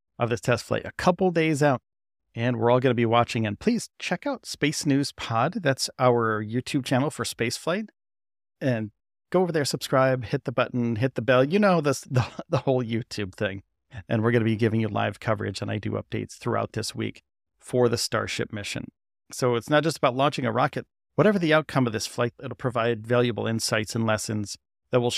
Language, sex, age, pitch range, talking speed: English, male, 40-59, 110-135 Hz, 215 wpm